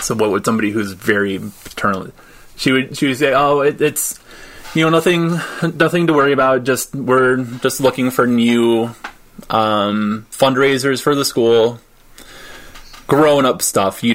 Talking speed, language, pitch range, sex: 155 wpm, English, 105-135 Hz, male